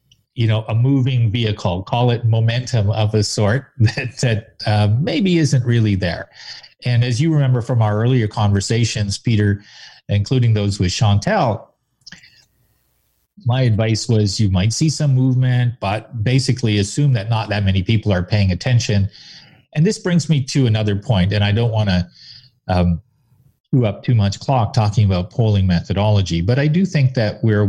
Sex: male